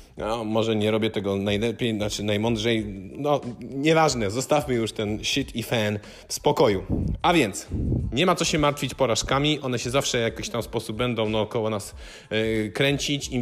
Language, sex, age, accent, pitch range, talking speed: Polish, male, 30-49, native, 110-135 Hz, 180 wpm